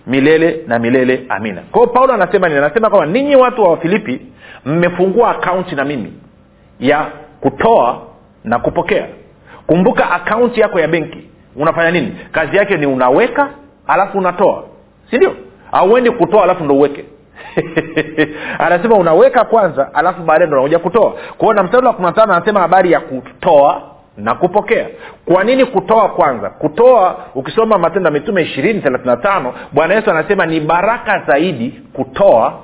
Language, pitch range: Swahili, 150-210 Hz